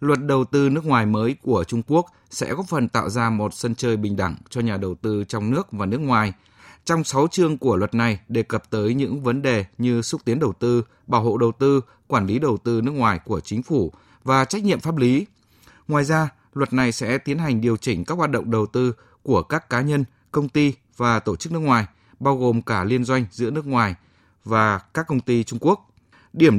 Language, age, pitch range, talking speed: Vietnamese, 20-39, 110-140 Hz, 230 wpm